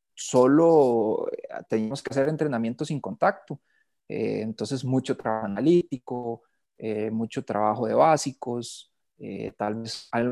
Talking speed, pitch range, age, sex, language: 120 wpm, 115-155 Hz, 30-49, male, Spanish